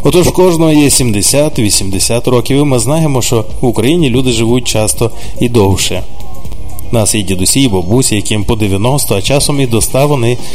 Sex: male